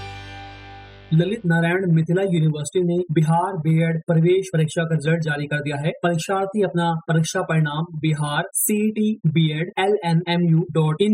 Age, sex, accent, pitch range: 20-39, male, native, 150-180 Hz